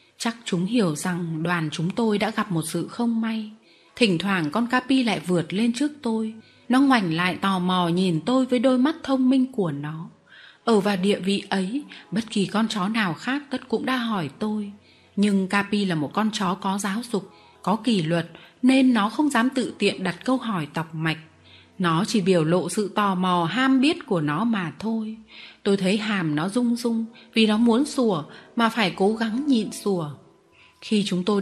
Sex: female